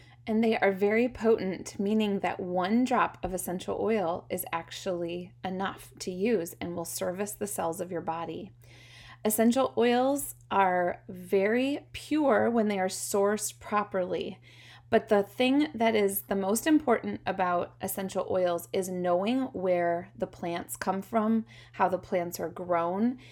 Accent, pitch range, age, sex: American, 180-225 Hz, 20-39, female